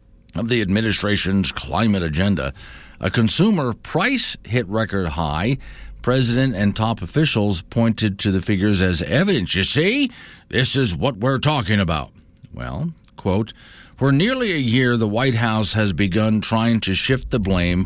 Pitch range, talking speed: 90-125 Hz, 150 wpm